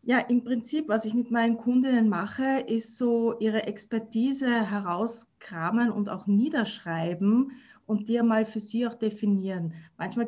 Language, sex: German, female